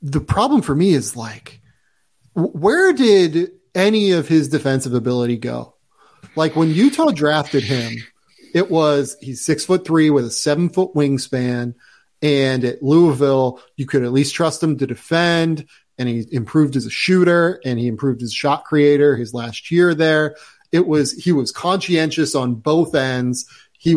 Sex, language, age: male, English, 30-49